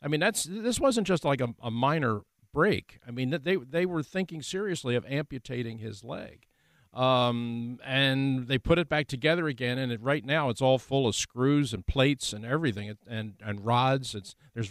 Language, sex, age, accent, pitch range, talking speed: English, male, 50-69, American, 115-150 Hz, 195 wpm